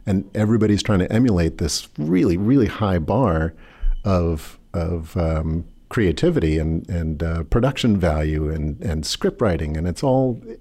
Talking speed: 145 wpm